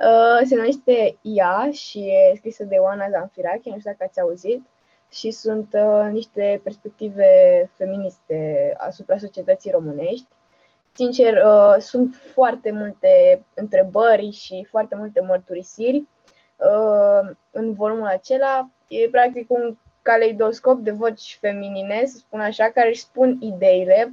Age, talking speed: 20-39, 120 wpm